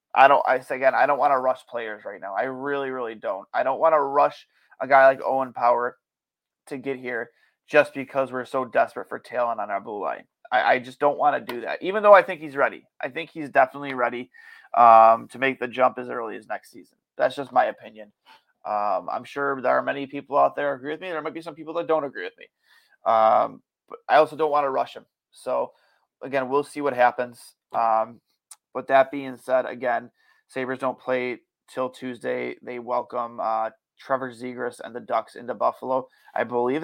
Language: English